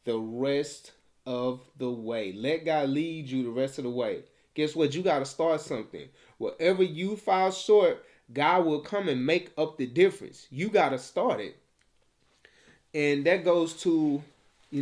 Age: 30-49